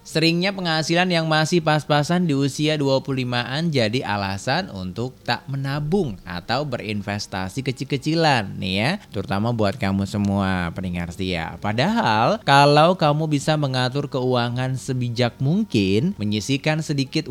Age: 30-49